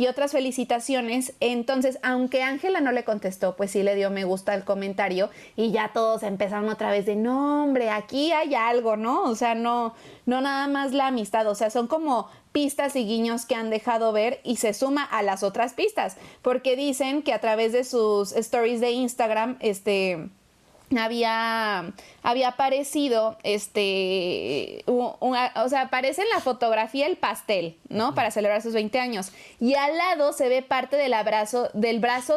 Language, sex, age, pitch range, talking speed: Spanish, female, 30-49, 210-255 Hz, 180 wpm